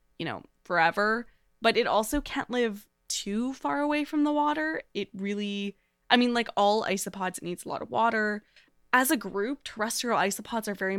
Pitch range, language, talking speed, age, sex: 190-230 Hz, English, 185 wpm, 20-39, female